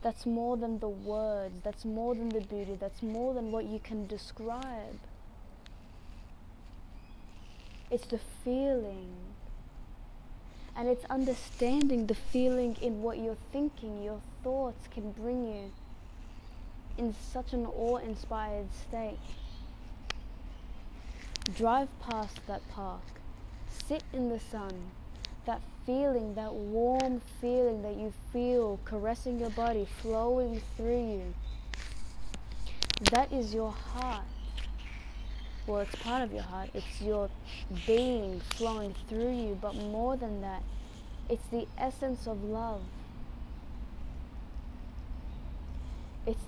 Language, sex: English, female